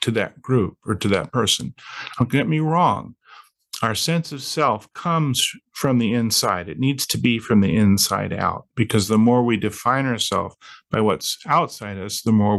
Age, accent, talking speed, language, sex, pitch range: 50-69, American, 185 wpm, English, male, 105-145 Hz